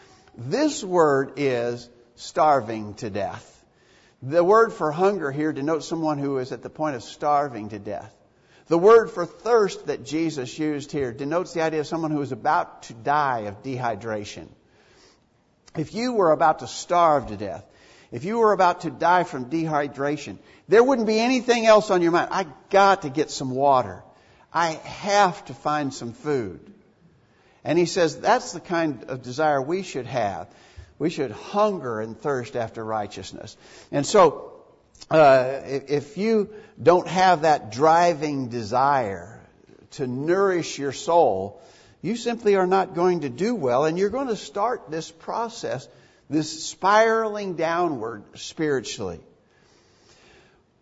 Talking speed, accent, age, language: 150 wpm, American, 60-79, English